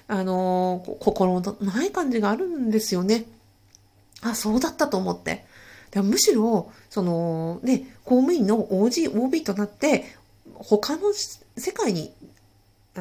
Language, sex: Japanese, female